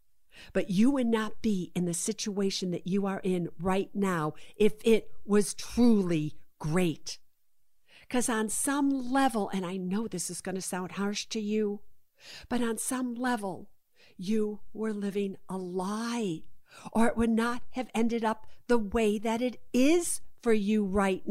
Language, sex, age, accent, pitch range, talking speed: English, female, 50-69, American, 190-245 Hz, 165 wpm